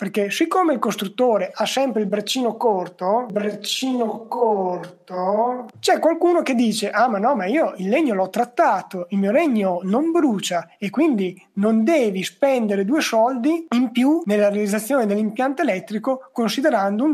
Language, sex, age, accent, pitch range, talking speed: Italian, male, 30-49, native, 200-265 Hz, 150 wpm